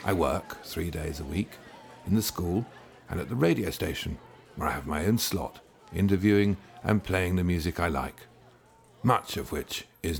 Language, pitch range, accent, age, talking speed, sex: English, 80-110 Hz, British, 50-69, 180 wpm, male